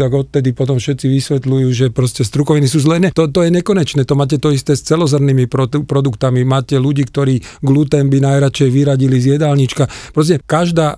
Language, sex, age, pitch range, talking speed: Slovak, male, 40-59, 125-150 Hz, 175 wpm